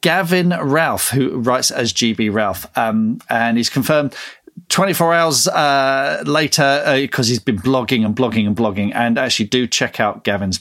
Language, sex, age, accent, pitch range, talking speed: English, male, 40-59, British, 105-130 Hz, 170 wpm